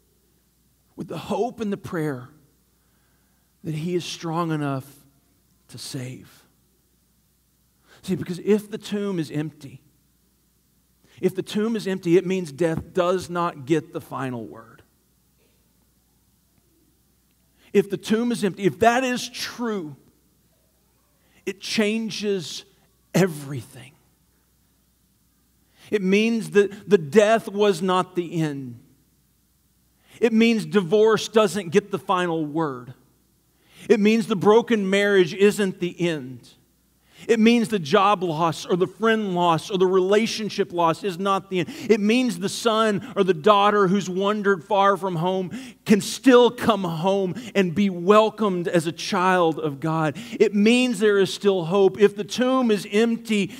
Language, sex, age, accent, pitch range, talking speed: English, male, 40-59, American, 165-210 Hz, 140 wpm